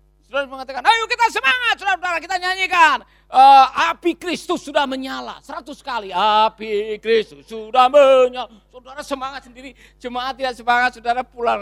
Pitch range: 160-250 Hz